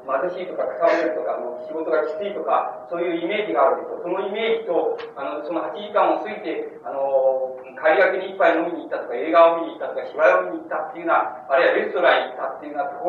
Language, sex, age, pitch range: Japanese, male, 40-59, 160-235 Hz